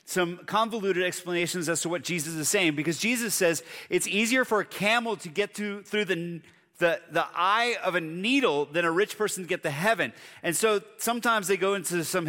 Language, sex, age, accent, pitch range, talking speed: English, male, 30-49, American, 170-210 Hz, 210 wpm